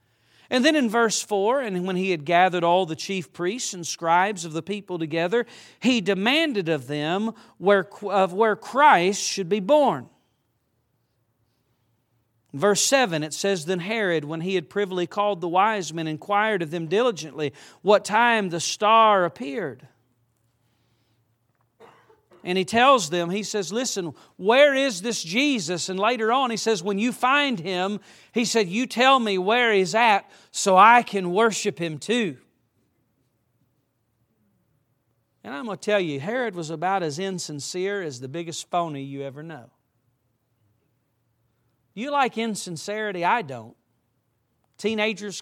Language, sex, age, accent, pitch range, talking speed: English, male, 40-59, American, 135-210 Hz, 150 wpm